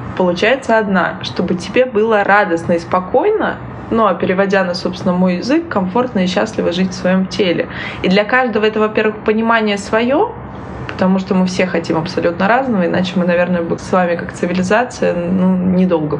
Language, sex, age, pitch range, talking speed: Russian, female, 20-39, 180-230 Hz, 165 wpm